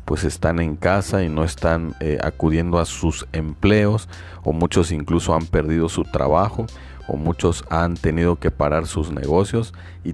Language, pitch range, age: Spanish, 80-95 Hz, 40-59